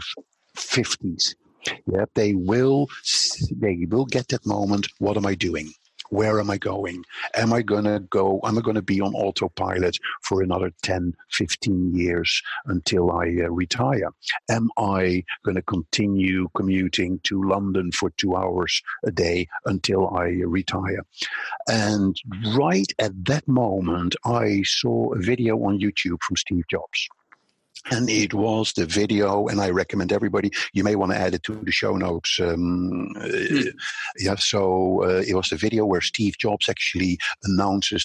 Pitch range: 90-105 Hz